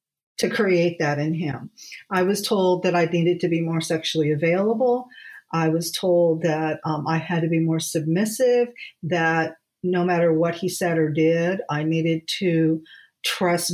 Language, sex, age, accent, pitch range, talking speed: English, female, 50-69, American, 165-200 Hz, 170 wpm